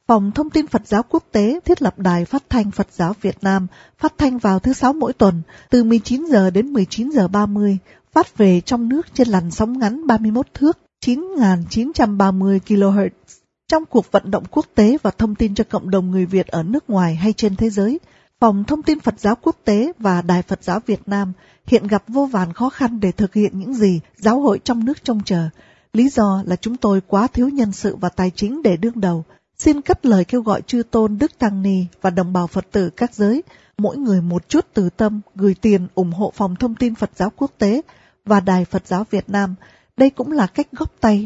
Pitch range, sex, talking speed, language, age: 195-245 Hz, female, 225 wpm, Vietnamese, 20-39